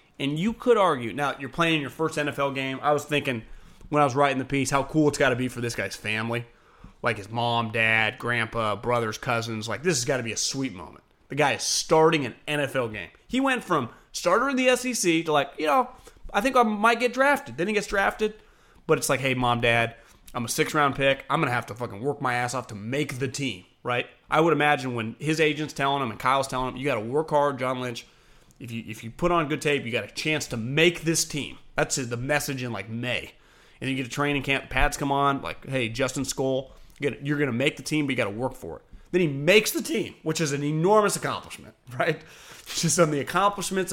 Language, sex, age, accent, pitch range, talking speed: English, male, 30-49, American, 125-160 Hz, 245 wpm